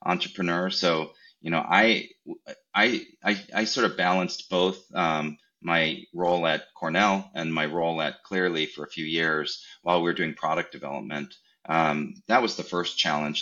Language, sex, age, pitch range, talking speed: English, male, 30-49, 80-90 Hz, 170 wpm